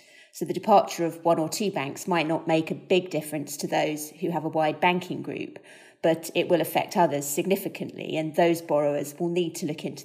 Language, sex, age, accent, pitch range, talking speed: English, female, 30-49, British, 155-180 Hz, 215 wpm